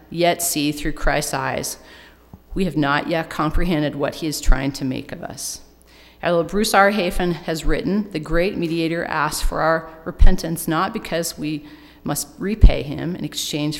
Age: 40-59